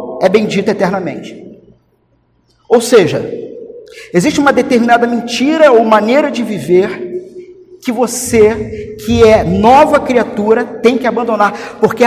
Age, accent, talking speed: 50-69, Brazilian, 115 wpm